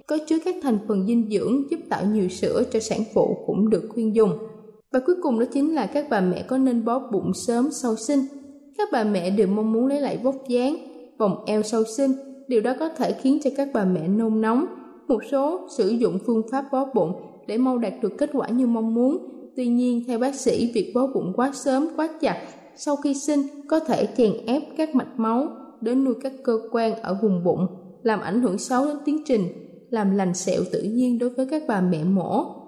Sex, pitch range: female, 215-270 Hz